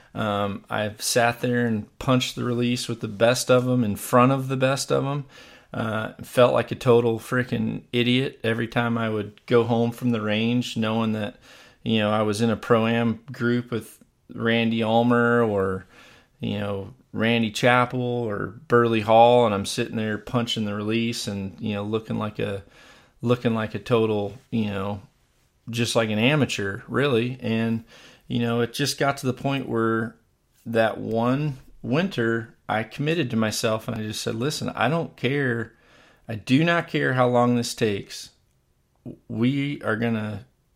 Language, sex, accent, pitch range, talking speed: English, male, American, 110-125 Hz, 175 wpm